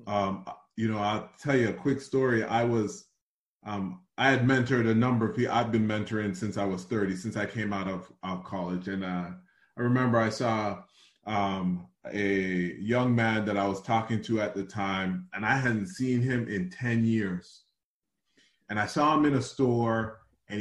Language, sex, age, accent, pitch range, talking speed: English, male, 30-49, American, 95-115 Hz, 195 wpm